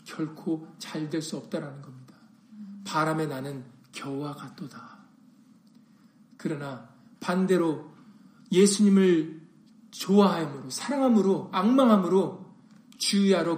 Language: Korean